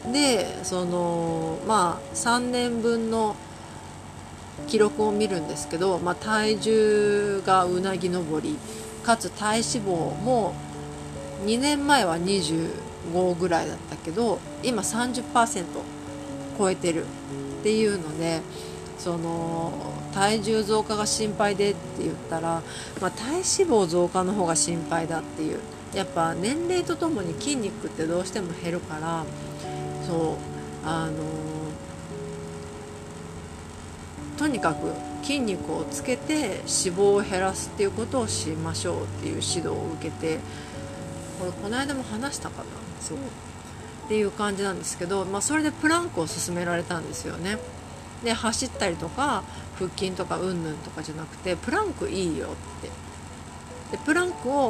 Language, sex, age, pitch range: Japanese, female, 40-59, 145-220 Hz